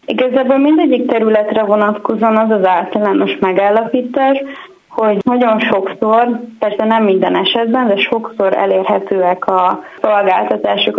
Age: 20-39